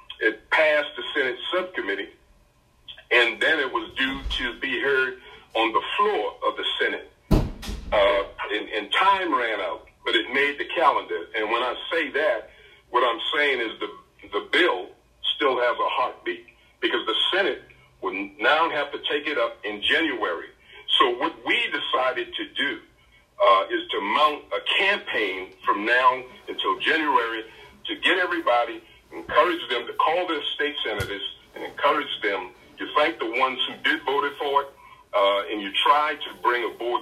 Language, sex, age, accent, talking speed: English, male, 50-69, American, 165 wpm